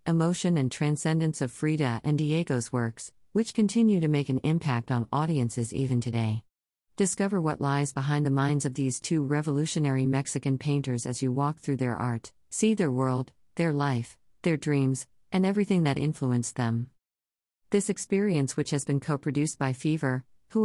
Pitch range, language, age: 130-160 Hz, English, 40-59